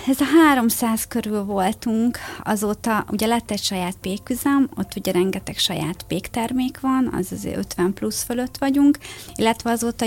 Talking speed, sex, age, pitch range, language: 150 wpm, female, 30-49, 190-235 Hz, Hungarian